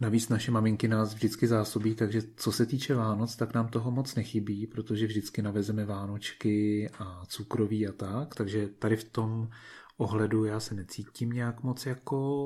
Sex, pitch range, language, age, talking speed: male, 105-115 Hz, Czech, 30-49, 170 wpm